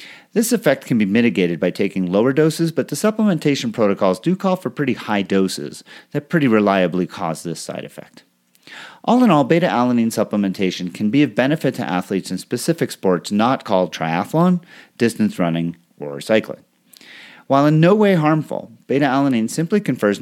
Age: 30-49